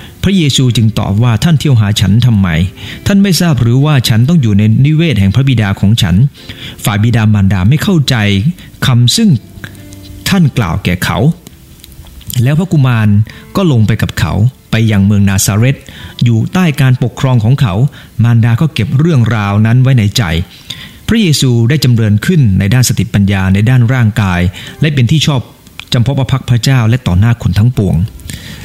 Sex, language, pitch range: male, English, 100-135 Hz